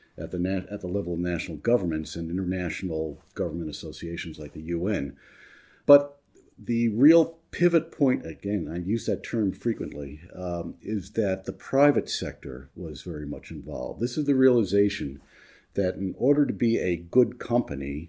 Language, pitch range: English, 85-115 Hz